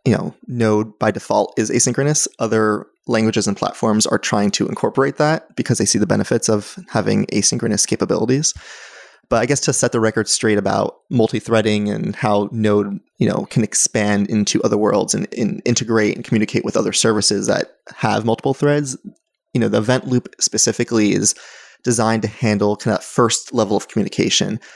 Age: 20-39